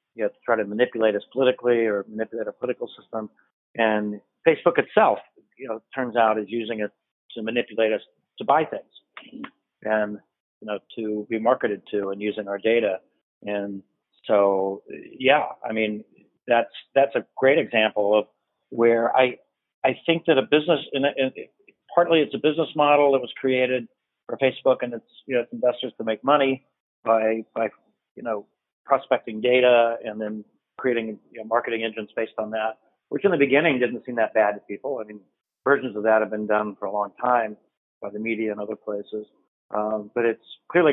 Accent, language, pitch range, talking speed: American, English, 105-125 Hz, 190 wpm